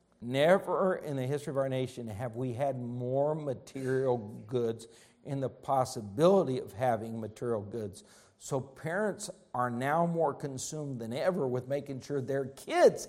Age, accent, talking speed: 50-69, American, 150 wpm